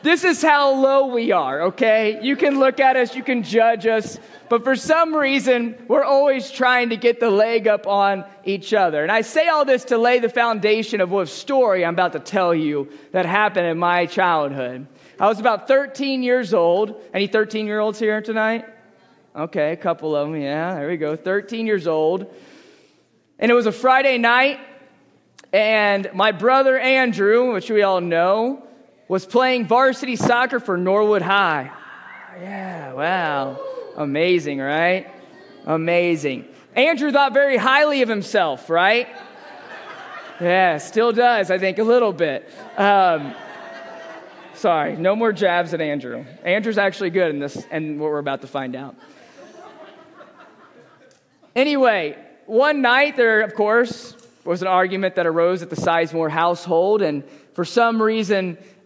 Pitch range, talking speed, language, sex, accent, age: 175-250 Hz, 155 wpm, English, male, American, 30-49